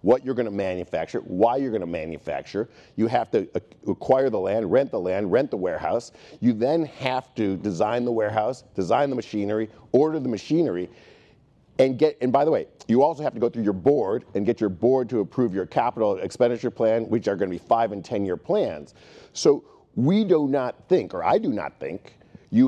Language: English